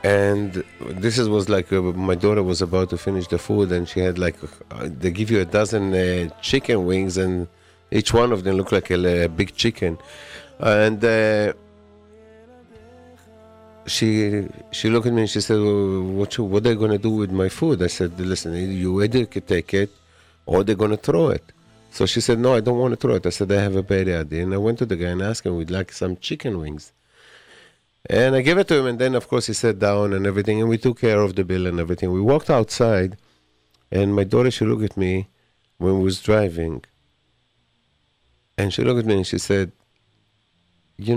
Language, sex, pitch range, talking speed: English, male, 90-110 Hz, 220 wpm